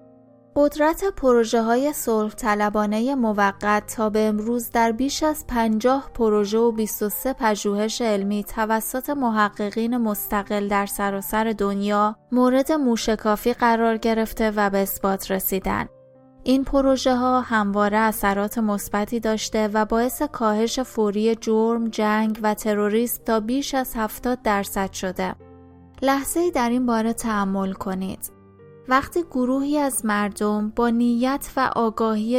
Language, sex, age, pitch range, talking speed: Persian, female, 20-39, 210-250 Hz, 125 wpm